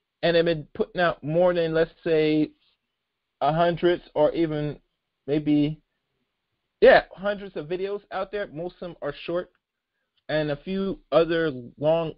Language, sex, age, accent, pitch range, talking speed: English, male, 40-59, American, 155-205 Hz, 150 wpm